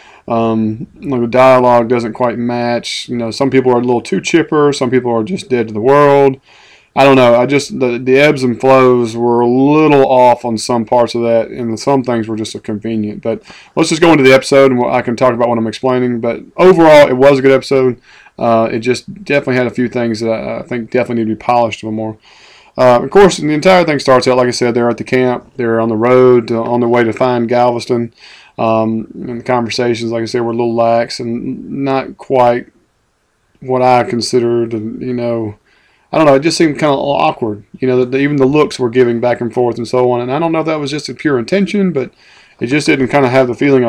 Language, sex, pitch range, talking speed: English, male, 120-135 Hz, 245 wpm